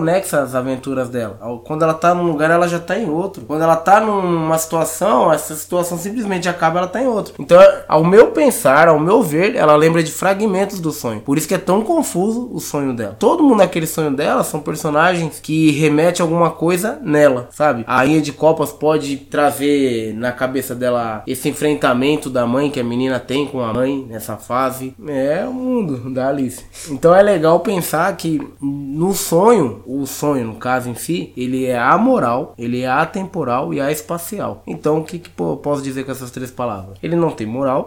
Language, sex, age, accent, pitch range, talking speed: Portuguese, male, 20-39, Brazilian, 130-175 Hz, 200 wpm